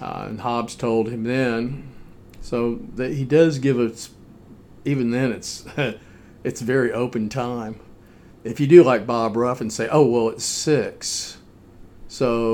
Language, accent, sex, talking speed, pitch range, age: English, American, male, 155 wpm, 110-120 Hz, 50-69